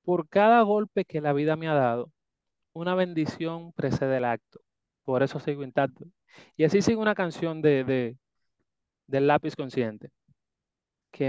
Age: 30-49